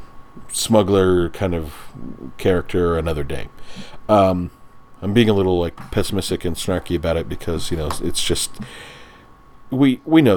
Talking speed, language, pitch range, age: 145 wpm, English, 85-100 Hz, 40-59